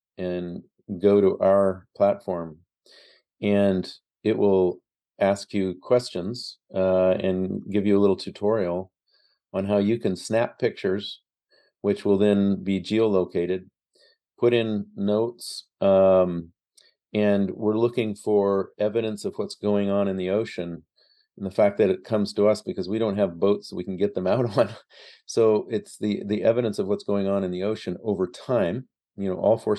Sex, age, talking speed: male, 40-59, 165 wpm